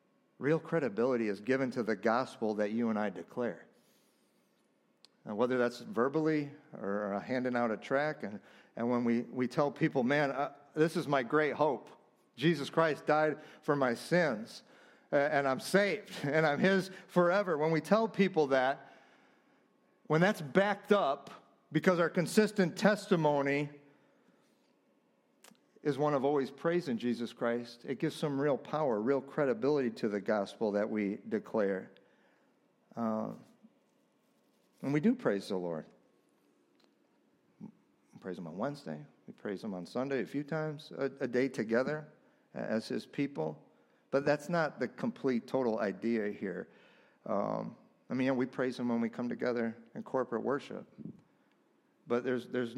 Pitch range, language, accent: 120-155 Hz, English, American